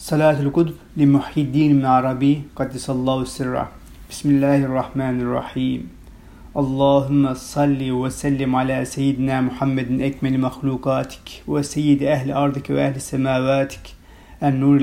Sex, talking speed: male, 105 wpm